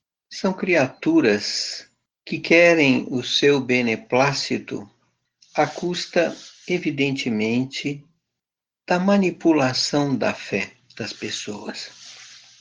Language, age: Portuguese, 60-79